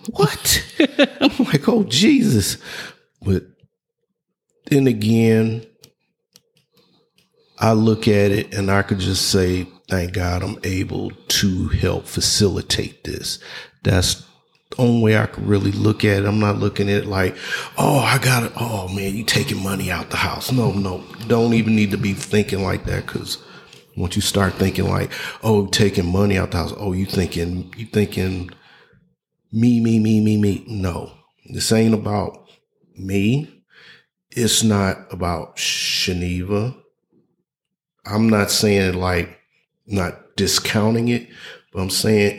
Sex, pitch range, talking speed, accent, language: male, 95-110 Hz, 145 wpm, American, English